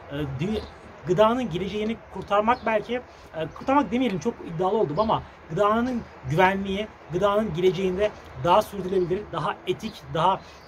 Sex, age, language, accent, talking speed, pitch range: male, 30-49, Turkish, native, 105 wpm, 180-225 Hz